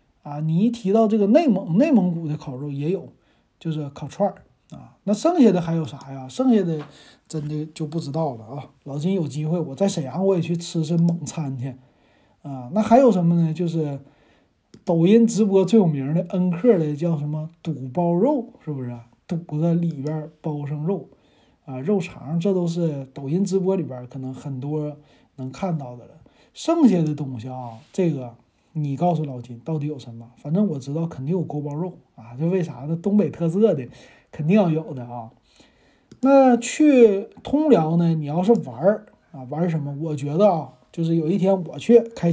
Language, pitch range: Chinese, 145-195 Hz